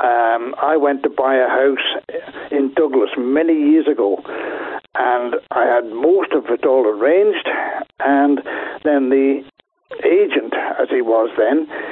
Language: English